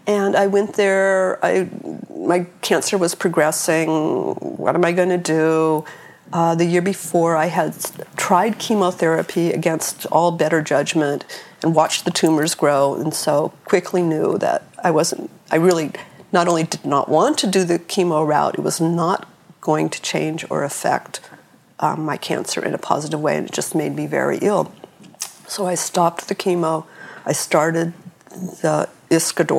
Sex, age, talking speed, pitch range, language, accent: female, 50-69, 160 wpm, 165-195 Hz, English, American